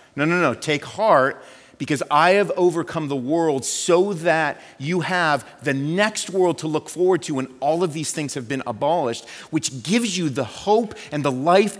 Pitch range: 150-230 Hz